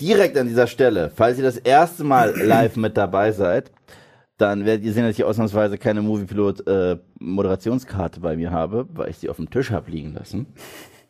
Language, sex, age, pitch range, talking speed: German, male, 30-49, 105-130 Hz, 190 wpm